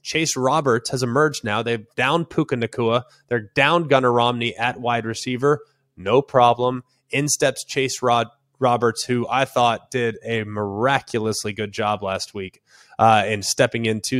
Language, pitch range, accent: English, 115-145 Hz, American